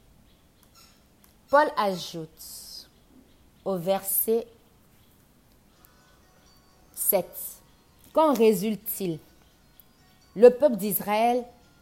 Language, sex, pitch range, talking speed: French, female, 170-220 Hz, 50 wpm